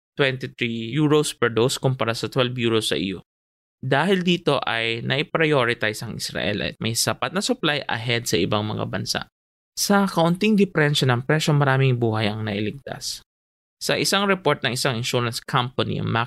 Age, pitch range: 20-39, 110-150 Hz